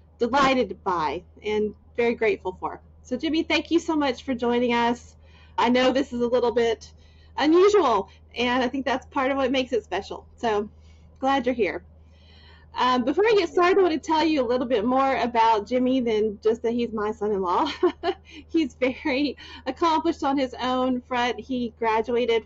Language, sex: English, female